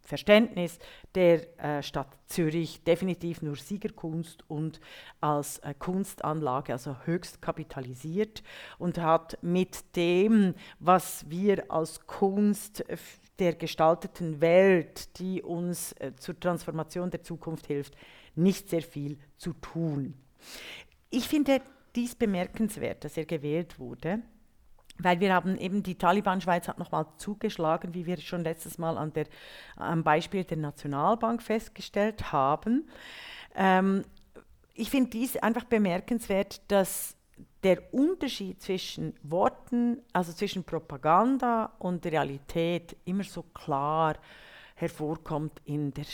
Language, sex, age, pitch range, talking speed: German, female, 50-69, 155-200 Hz, 115 wpm